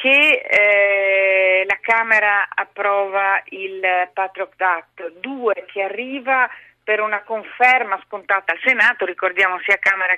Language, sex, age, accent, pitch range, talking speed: Italian, female, 40-59, native, 185-255 Hz, 120 wpm